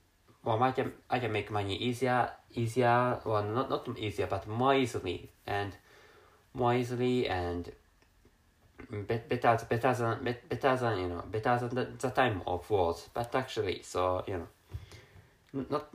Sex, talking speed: male, 150 wpm